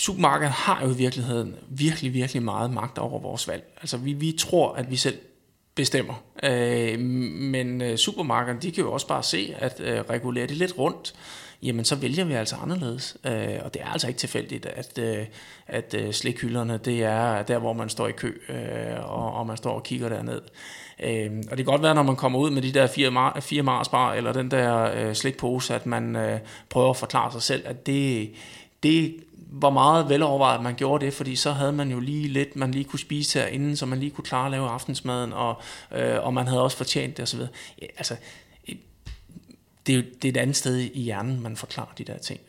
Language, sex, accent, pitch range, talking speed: Danish, male, native, 120-140 Hz, 220 wpm